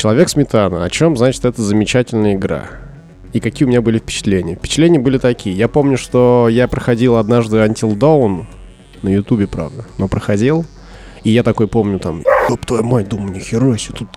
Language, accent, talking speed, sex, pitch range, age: Russian, native, 170 wpm, male, 105-130 Hz, 20-39